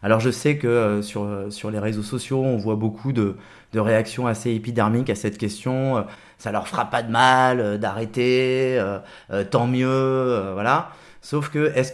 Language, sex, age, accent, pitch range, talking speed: French, male, 20-39, French, 115-140 Hz, 165 wpm